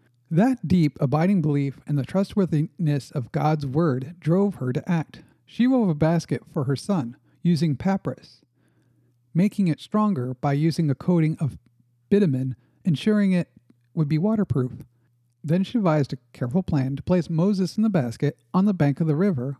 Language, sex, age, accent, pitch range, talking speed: English, male, 50-69, American, 140-185 Hz, 170 wpm